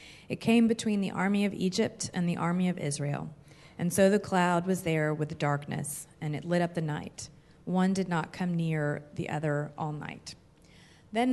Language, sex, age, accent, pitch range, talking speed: English, female, 30-49, American, 155-195 Hz, 195 wpm